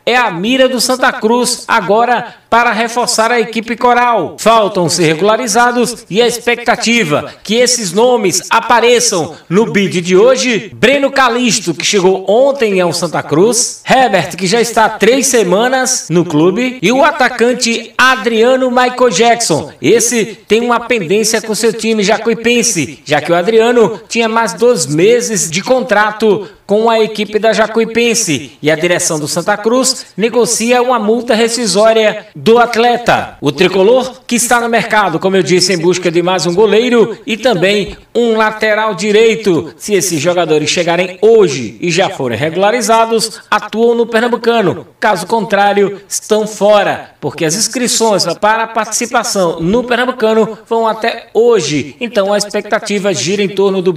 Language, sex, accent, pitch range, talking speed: Portuguese, male, Brazilian, 195-235 Hz, 150 wpm